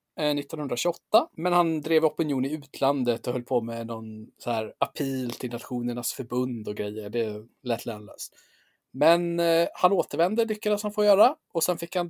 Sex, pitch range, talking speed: male, 125-185 Hz, 170 wpm